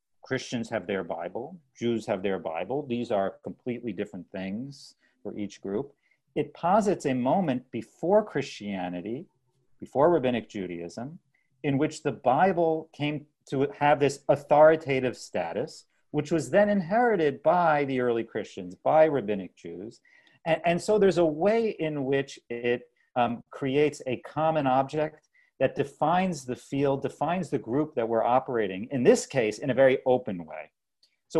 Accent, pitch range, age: American, 115-155 Hz, 50-69